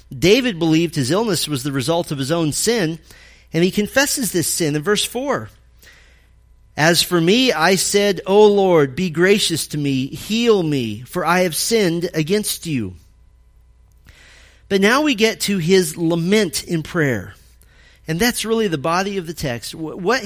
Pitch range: 145-205 Hz